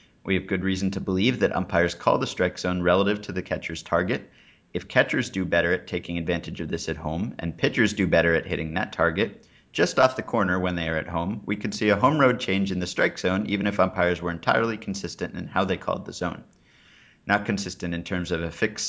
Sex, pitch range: male, 85-100 Hz